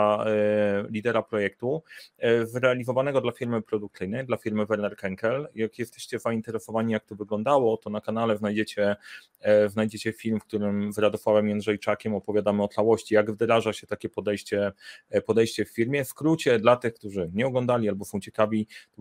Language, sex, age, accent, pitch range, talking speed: Polish, male, 30-49, native, 105-120 Hz, 150 wpm